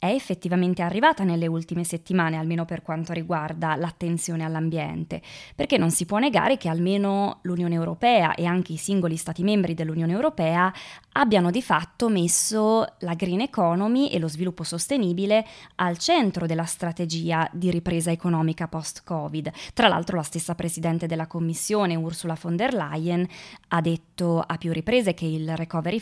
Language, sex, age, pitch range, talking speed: Italian, female, 20-39, 165-190 Hz, 155 wpm